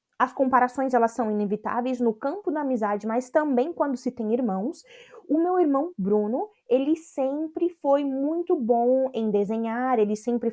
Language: Portuguese